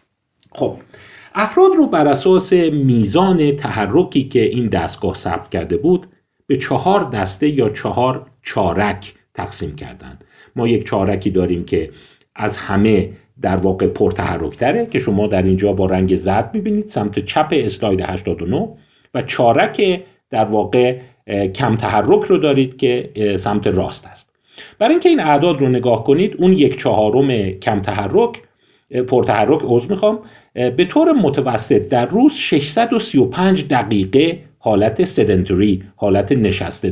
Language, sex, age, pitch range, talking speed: Persian, male, 50-69, 100-165 Hz, 130 wpm